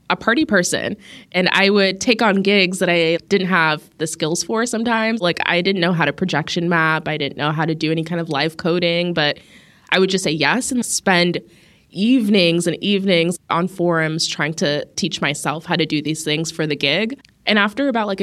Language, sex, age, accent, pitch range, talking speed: English, female, 20-39, American, 165-195 Hz, 215 wpm